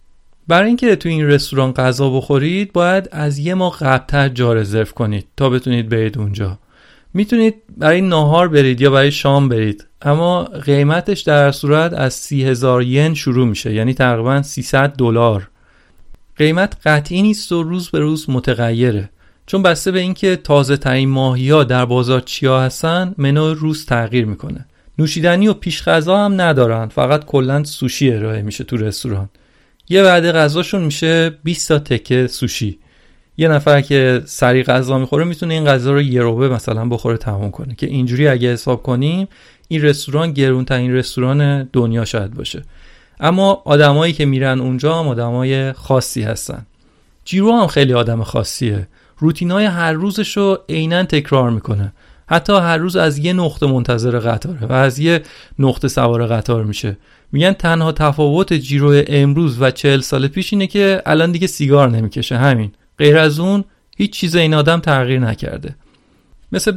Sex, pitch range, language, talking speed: male, 125-165 Hz, Persian, 155 wpm